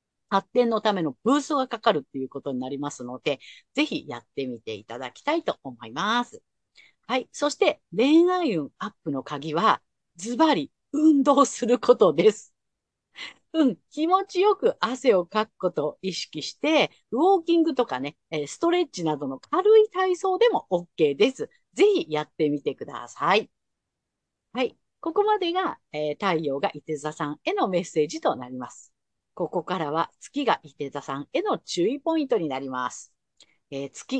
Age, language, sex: 50-69, Japanese, female